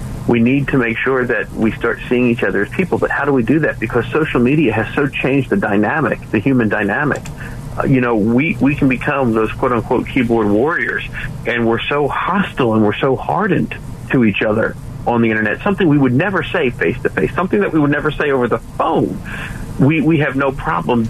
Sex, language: male, English